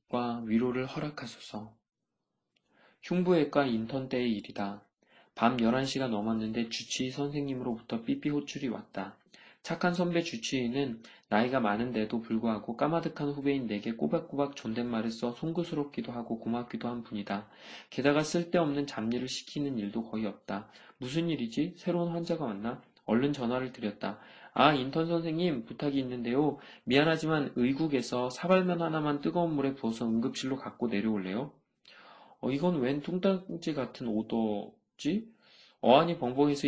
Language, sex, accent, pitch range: Korean, male, native, 115-155 Hz